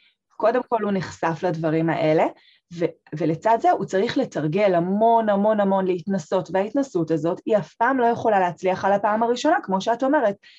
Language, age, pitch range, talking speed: Hebrew, 20-39, 185-240 Hz, 170 wpm